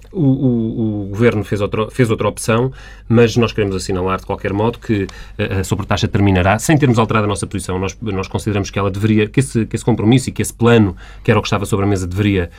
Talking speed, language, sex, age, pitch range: 225 wpm, Portuguese, male, 30-49, 95-115 Hz